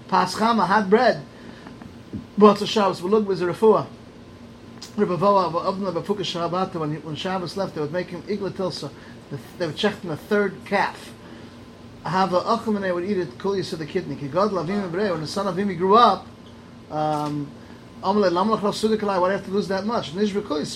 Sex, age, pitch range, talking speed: male, 30-49, 155-200 Hz, 150 wpm